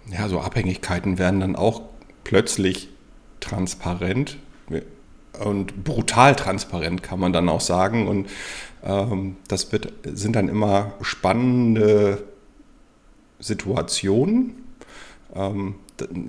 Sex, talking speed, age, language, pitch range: male, 95 wpm, 50-69, German, 95-120 Hz